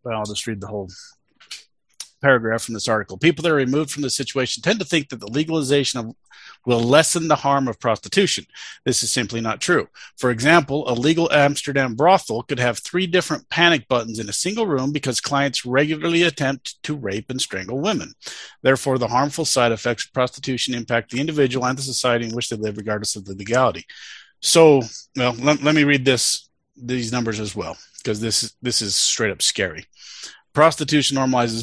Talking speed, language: 190 wpm, English